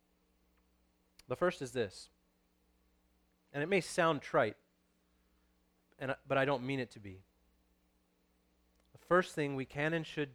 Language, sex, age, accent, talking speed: English, male, 30-49, American, 140 wpm